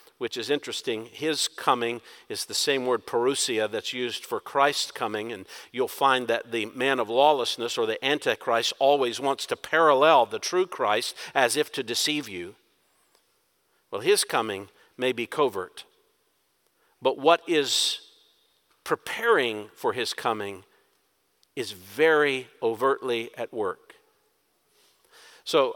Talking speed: 135 wpm